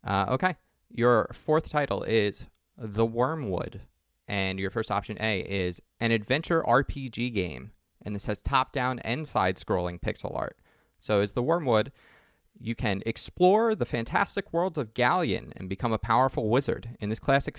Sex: male